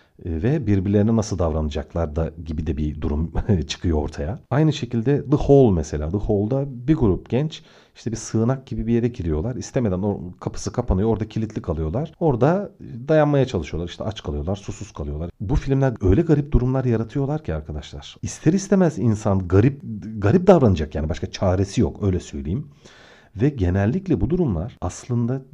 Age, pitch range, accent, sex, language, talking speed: 40-59, 90-125 Hz, native, male, Turkish, 160 wpm